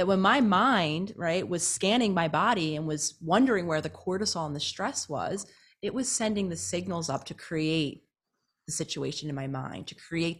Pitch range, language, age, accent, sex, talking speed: 155-200 Hz, English, 30-49, American, female, 195 wpm